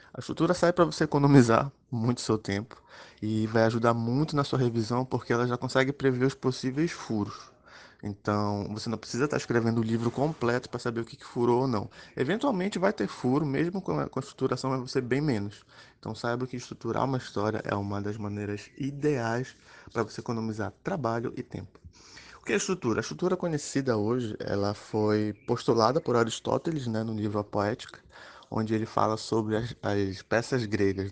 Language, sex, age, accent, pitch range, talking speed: Portuguese, male, 20-39, Brazilian, 110-140 Hz, 185 wpm